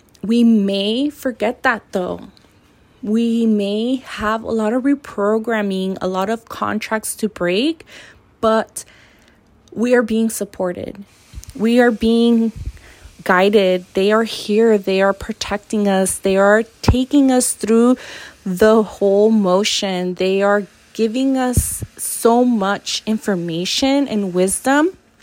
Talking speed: 120 wpm